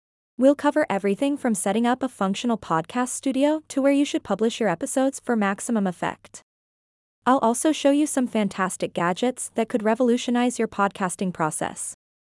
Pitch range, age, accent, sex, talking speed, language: 205-260 Hz, 20-39, American, female, 160 wpm, English